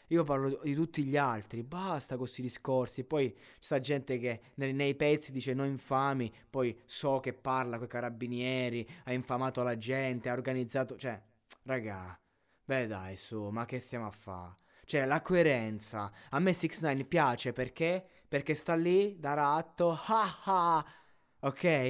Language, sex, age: Italian, male, 20-39